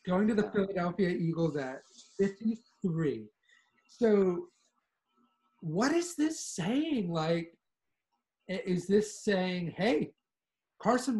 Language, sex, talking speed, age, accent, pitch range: English, male, 95 wpm, 40-59, American, 145-215 Hz